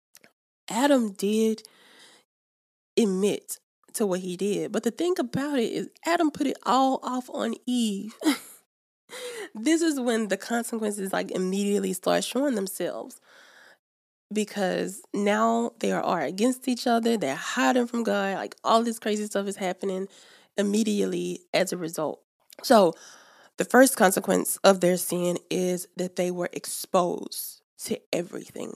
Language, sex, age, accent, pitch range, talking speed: English, female, 10-29, American, 180-235 Hz, 140 wpm